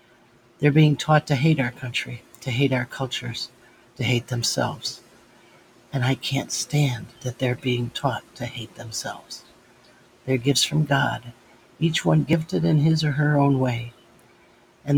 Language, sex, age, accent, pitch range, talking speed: English, male, 60-79, American, 120-135 Hz, 155 wpm